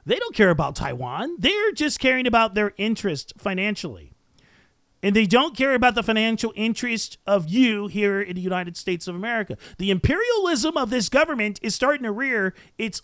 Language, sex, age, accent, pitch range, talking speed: English, male, 40-59, American, 200-260 Hz, 180 wpm